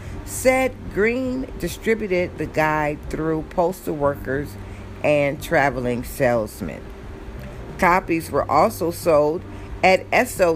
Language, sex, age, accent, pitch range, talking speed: English, female, 50-69, American, 120-165 Hz, 95 wpm